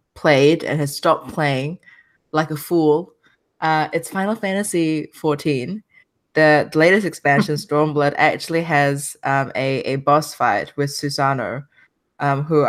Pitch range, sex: 135-155 Hz, female